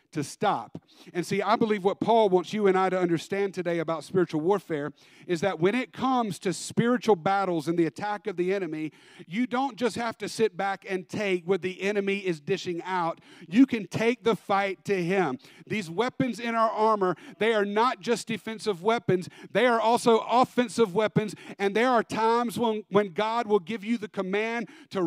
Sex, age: male, 50-69